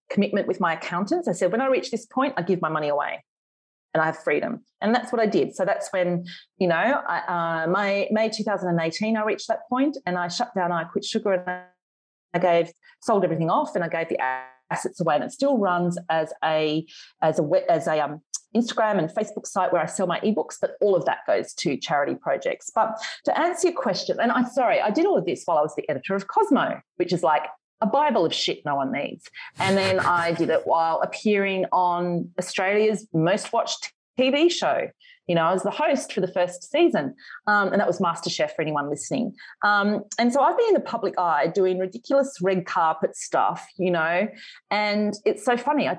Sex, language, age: female, English, 30-49